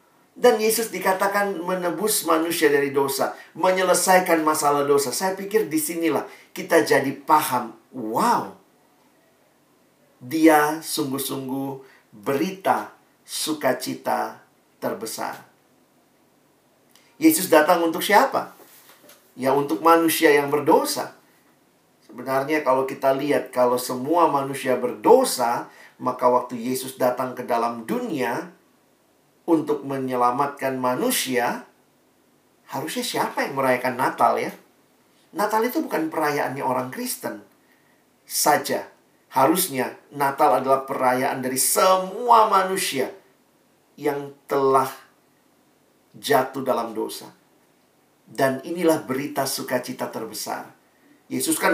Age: 50-69